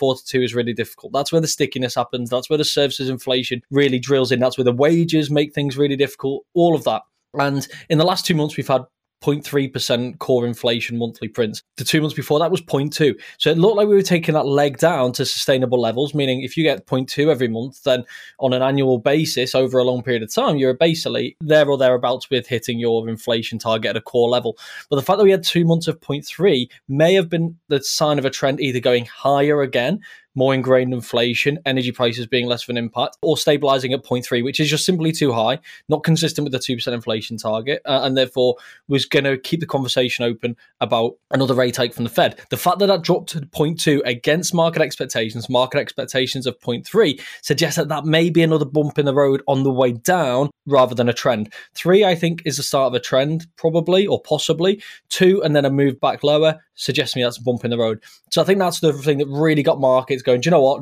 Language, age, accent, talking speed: English, 20-39, British, 230 wpm